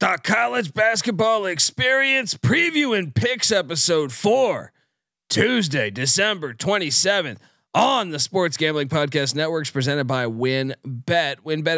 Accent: American